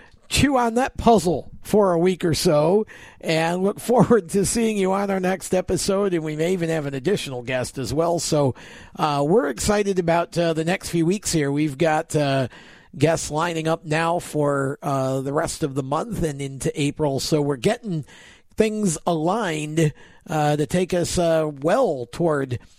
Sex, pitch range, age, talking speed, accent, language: male, 145-195 Hz, 50-69, 180 wpm, American, English